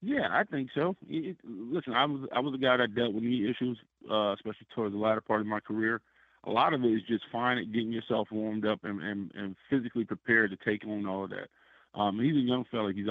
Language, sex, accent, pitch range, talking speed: English, male, American, 100-115 Hz, 250 wpm